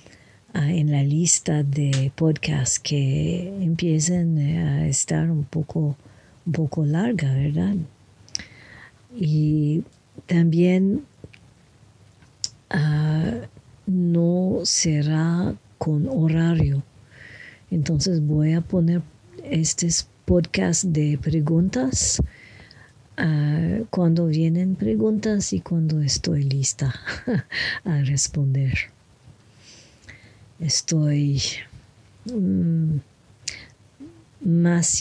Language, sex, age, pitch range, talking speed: English, female, 50-69, 125-170 Hz, 70 wpm